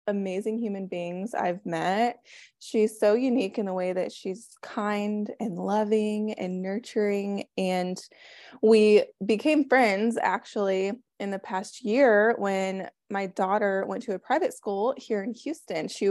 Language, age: English, 20-39